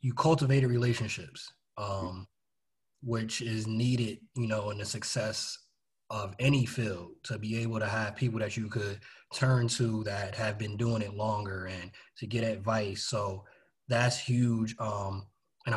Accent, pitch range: American, 105-125 Hz